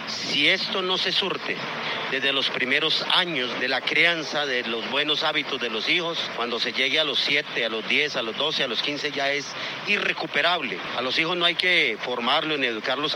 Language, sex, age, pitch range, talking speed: Spanish, male, 40-59, 130-160 Hz, 210 wpm